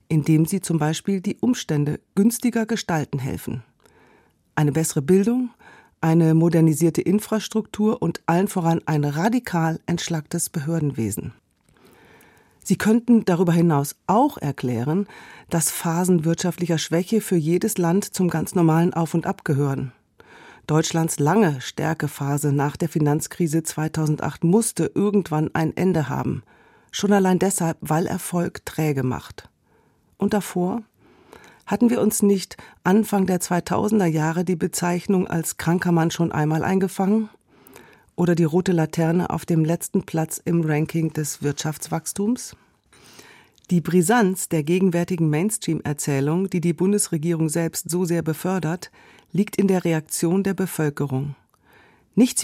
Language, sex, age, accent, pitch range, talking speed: German, female, 40-59, German, 160-195 Hz, 125 wpm